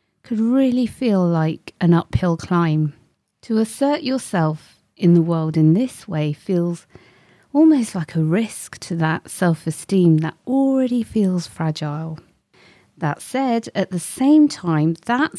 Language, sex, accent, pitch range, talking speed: English, female, British, 160-225 Hz, 135 wpm